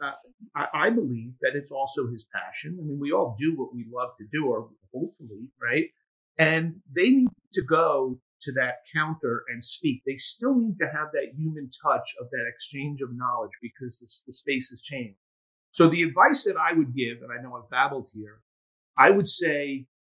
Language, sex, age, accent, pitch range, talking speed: English, male, 40-59, American, 120-160 Hz, 200 wpm